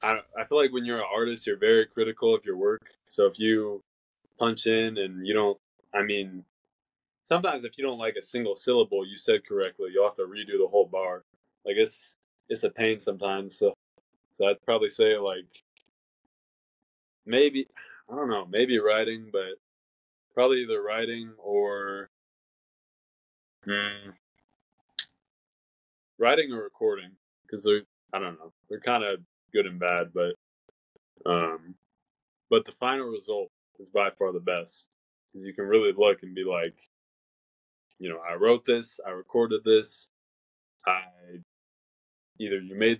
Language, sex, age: English, male, 20-39